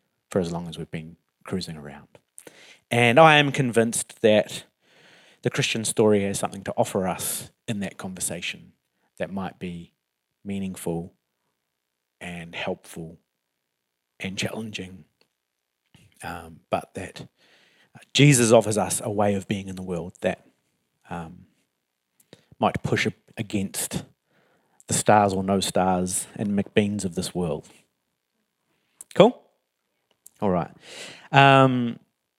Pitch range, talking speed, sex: 90-120 Hz, 120 wpm, male